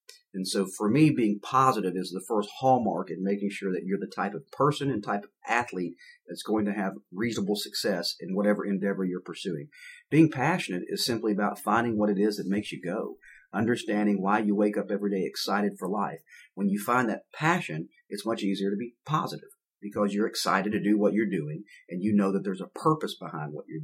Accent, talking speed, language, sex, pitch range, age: American, 215 wpm, English, male, 100-130 Hz, 40-59